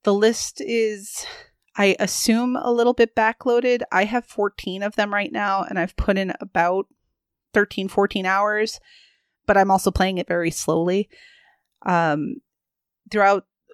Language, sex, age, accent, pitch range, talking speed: English, female, 30-49, American, 185-235 Hz, 145 wpm